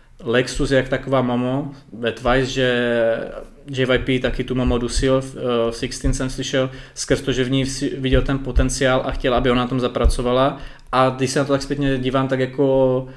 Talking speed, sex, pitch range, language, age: 190 wpm, male, 125-135 Hz, Czech, 20-39